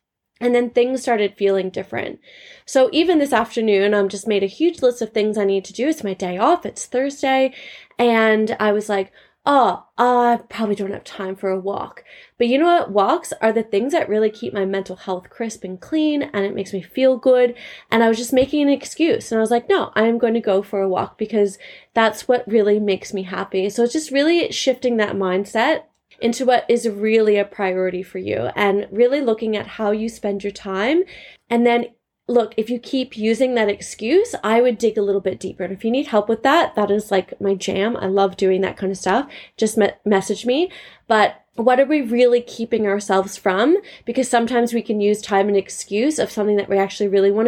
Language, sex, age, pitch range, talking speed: English, female, 20-39, 195-245 Hz, 220 wpm